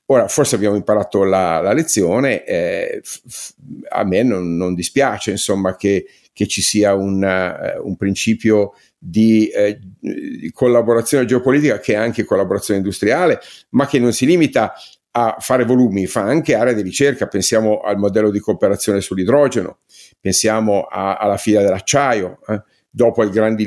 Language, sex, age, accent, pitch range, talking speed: Italian, male, 50-69, native, 95-120 Hz, 150 wpm